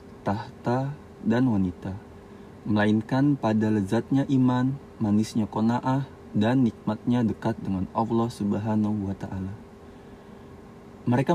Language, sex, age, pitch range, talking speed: Indonesian, male, 20-39, 100-125 Hz, 95 wpm